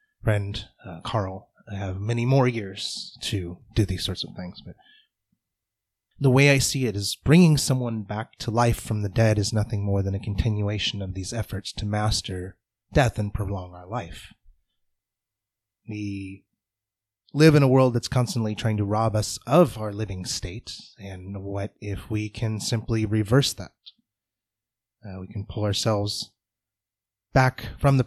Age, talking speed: 30-49, 160 wpm